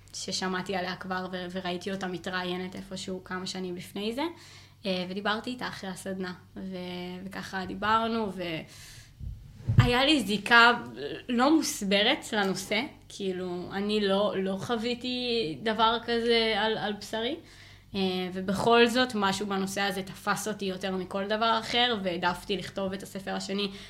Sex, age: female, 20-39